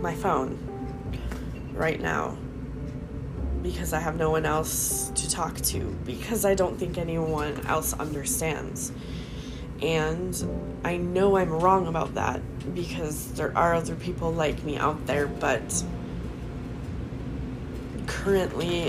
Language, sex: English, female